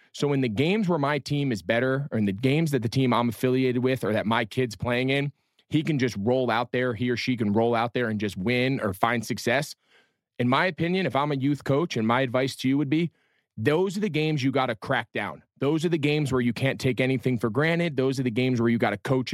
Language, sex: English, male